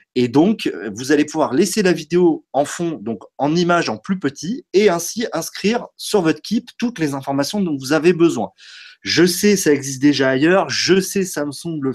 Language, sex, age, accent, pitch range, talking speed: French, male, 30-49, French, 140-195 Hz, 195 wpm